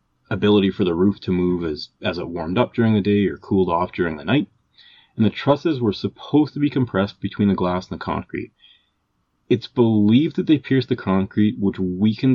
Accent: American